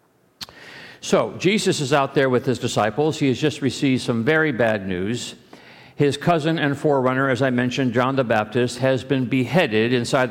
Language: English